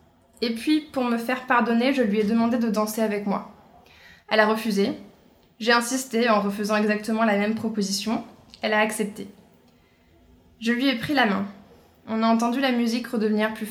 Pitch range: 215-245 Hz